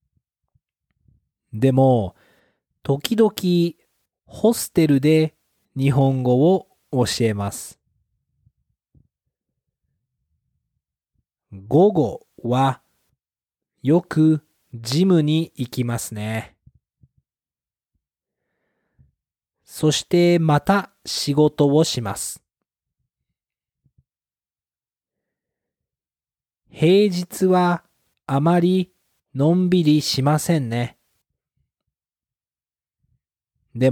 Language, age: Japanese, 40-59